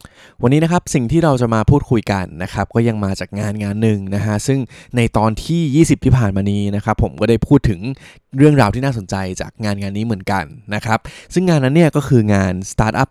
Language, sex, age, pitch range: Thai, male, 20-39, 100-125 Hz